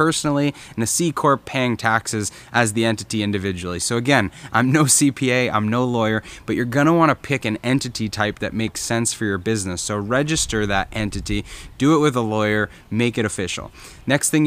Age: 20-39